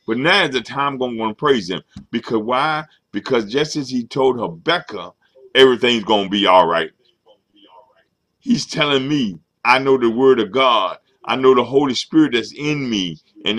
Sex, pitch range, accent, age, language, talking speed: male, 125-165 Hz, American, 50-69, English, 185 wpm